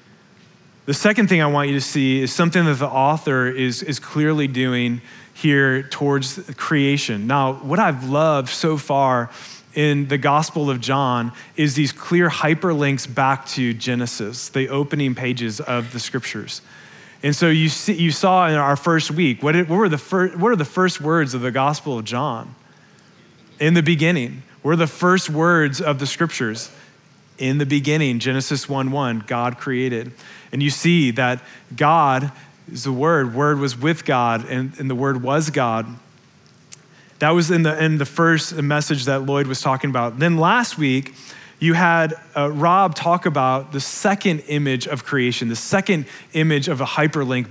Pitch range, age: 130-160 Hz, 30-49